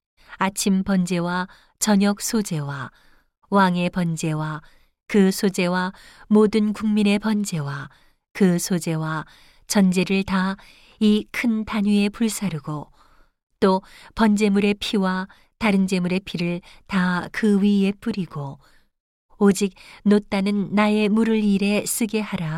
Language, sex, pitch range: Korean, female, 180-210 Hz